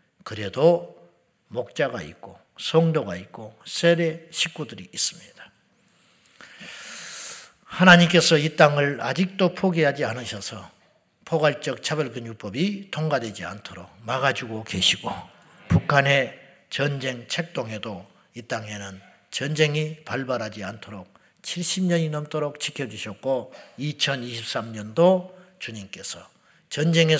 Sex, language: male, Korean